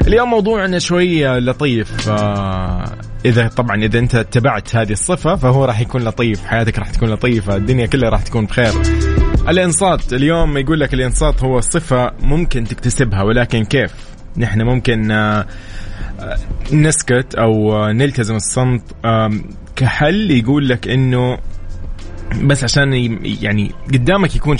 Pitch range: 105-135 Hz